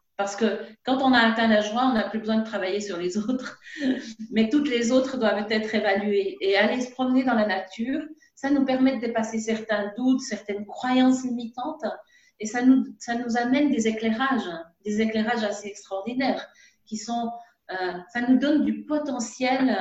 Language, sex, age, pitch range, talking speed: French, female, 40-59, 205-260 Hz, 175 wpm